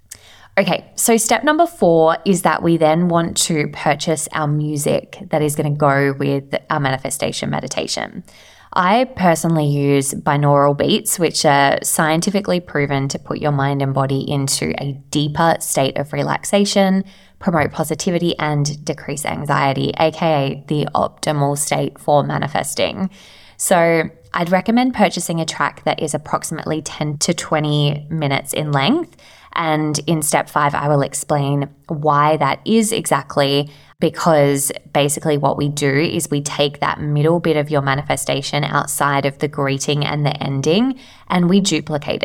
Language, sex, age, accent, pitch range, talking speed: English, female, 20-39, Australian, 140-165 Hz, 150 wpm